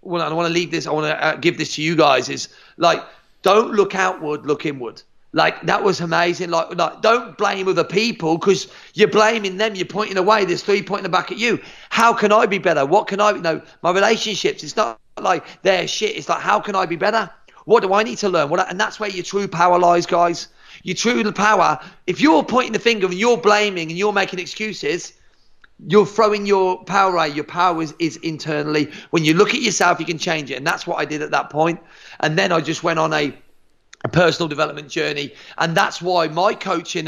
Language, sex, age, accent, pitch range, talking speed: English, male, 40-59, British, 155-200 Hz, 230 wpm